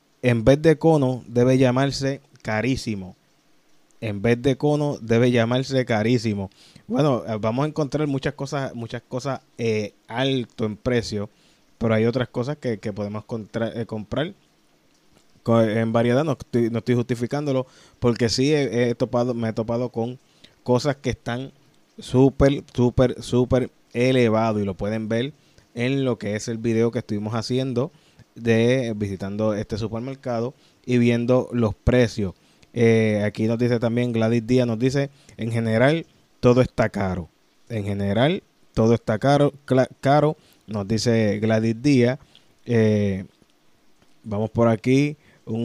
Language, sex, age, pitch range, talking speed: Spanish, male, 20-39, 110-130 Hz, 140 wpm